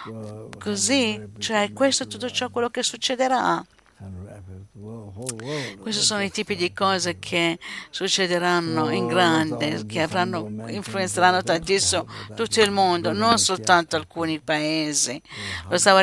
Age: 60-79